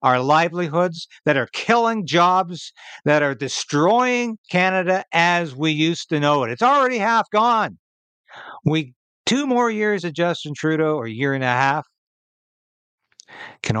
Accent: American